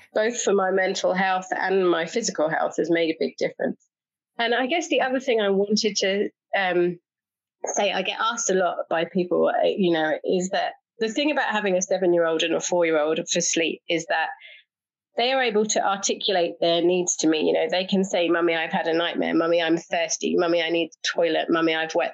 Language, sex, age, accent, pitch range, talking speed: English, female, 30-49, British, 175-235 Hz, 220 wpm